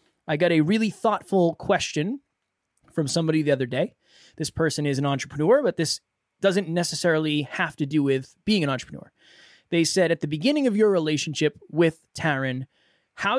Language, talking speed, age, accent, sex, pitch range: English, 170 wpm, 20-39, American, male, 140-170 Hz